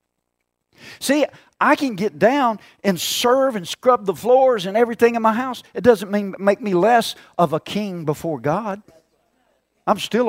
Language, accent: English, American